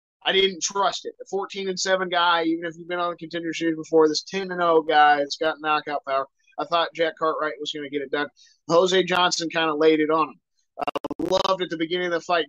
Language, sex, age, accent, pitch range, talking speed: English, male, 20-39, American, 160-180 Hz, 260 wpm